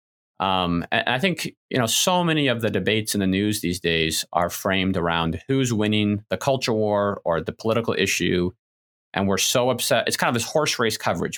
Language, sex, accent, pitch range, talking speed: English, male, American, 90-130 Hz, 205 wpm